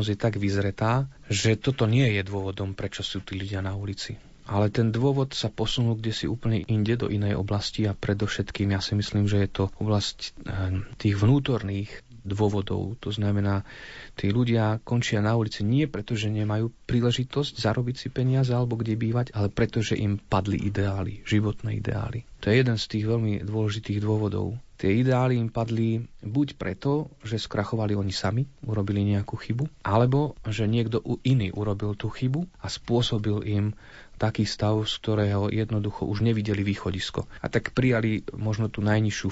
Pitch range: 100-115 Hz